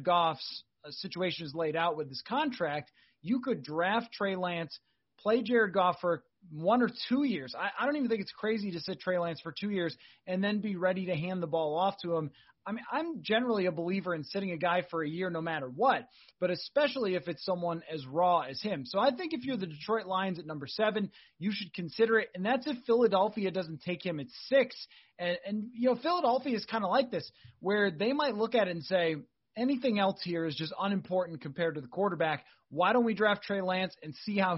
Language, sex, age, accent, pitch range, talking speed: English, male, 30-49, American, 165-225 Hz, 230 wpm